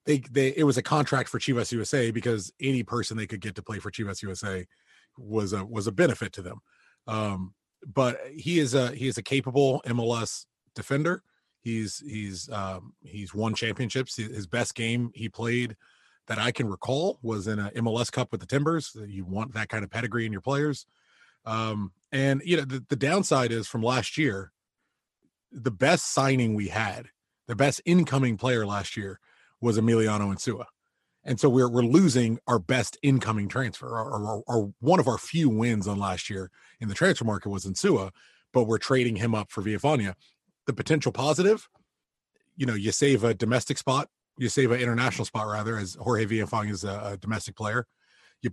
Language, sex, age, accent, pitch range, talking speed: English, male, 30-49, American, 105-130 Hz, 190 wpm